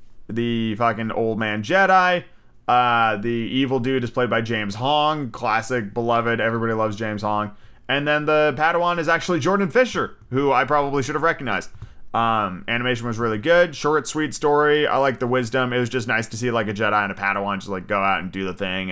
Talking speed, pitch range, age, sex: 210 wpm, 110-150 Hz, 30-49, male